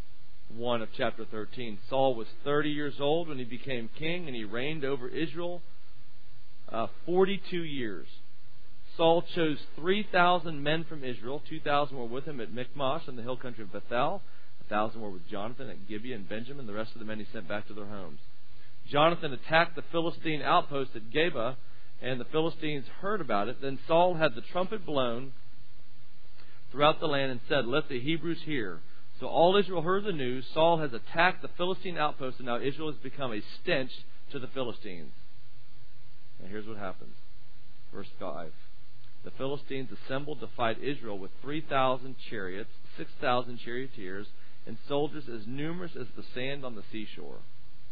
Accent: American